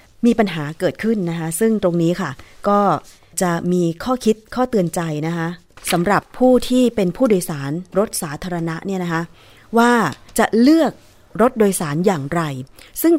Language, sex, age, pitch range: Thai, female, 20-39, 155-205 Hz